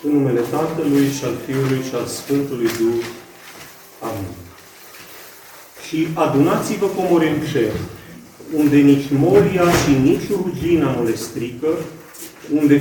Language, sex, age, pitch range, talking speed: Romanian, male, 40-59, 125-160 Hz, 120 wpm